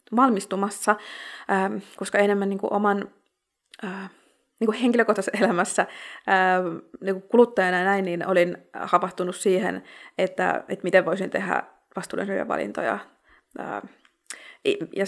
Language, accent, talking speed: Finnish, native, 105 wpm